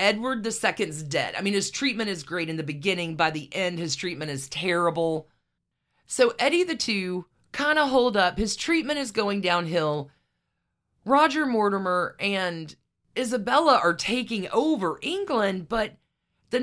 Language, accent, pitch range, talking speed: English, American, 175-250 Hz, 150 wpm